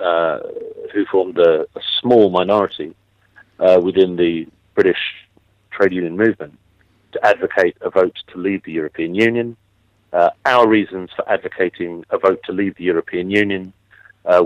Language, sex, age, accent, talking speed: English, male, 40-59, British, 150 wpm